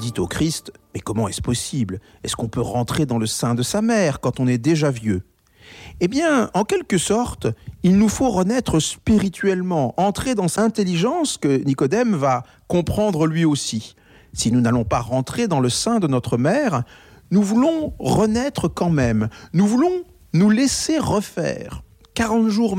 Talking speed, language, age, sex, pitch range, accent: 175 wpm, French, 50-69, male, 130-215 Hz, French